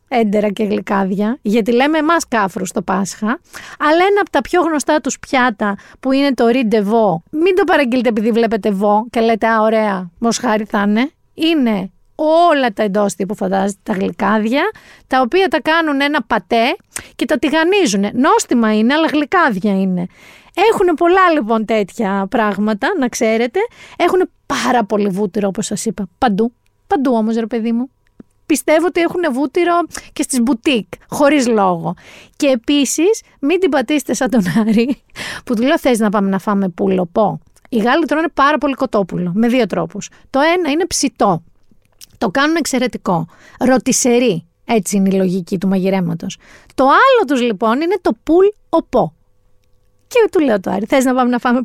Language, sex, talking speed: Greek, female, 165 wpm